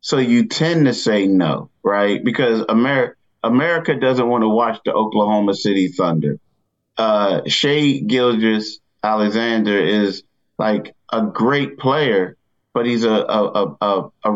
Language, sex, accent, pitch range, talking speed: English, male, American, 110-130 Hz, 130 wpm